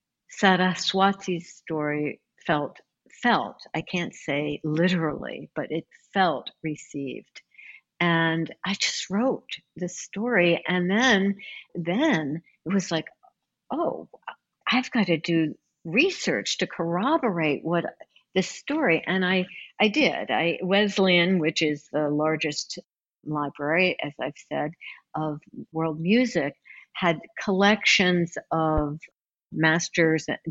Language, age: English, 60-79